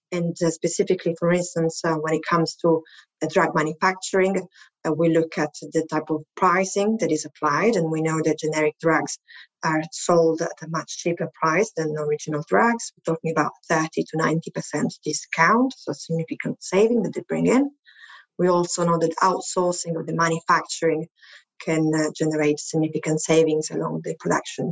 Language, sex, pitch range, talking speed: English, female, 160-185 Hz, 170 wpm